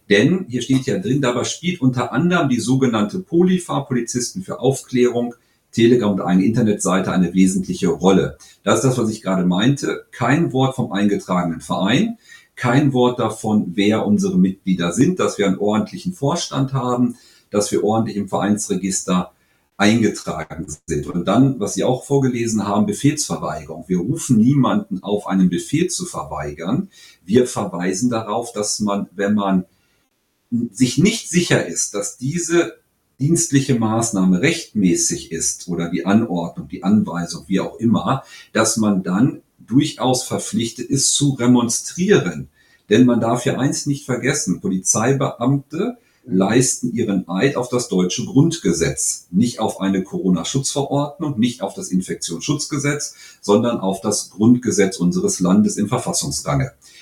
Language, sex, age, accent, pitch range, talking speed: German, male, 40-59, German, 100-140 Hz, 140 wpm